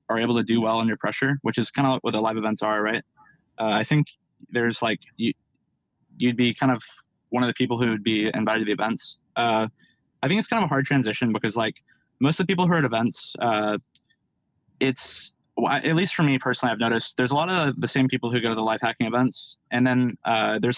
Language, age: English, 20-39